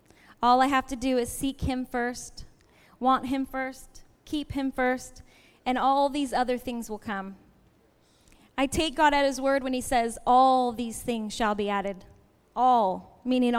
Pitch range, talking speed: 230-270 Hz, 170 wpm